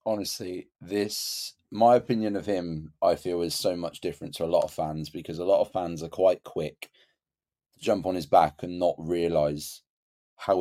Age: 30-49